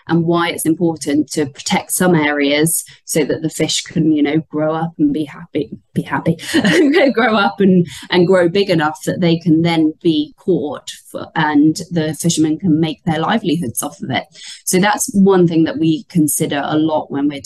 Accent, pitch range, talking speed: British, 155-180 Hz, 195 wpm